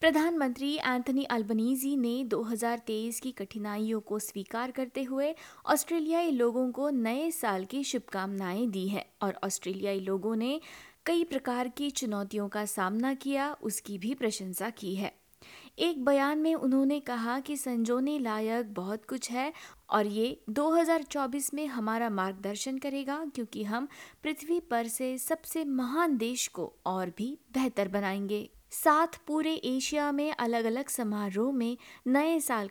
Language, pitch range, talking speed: Hindi, 215-285 Hz, 140 wpm